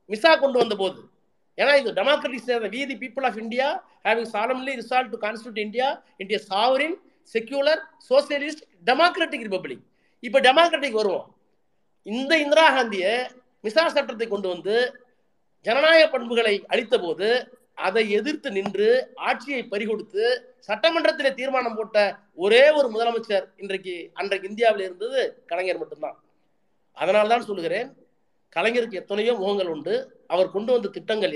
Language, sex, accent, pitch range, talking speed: Tamil, male, native, 190-270 Hz, 70 wpm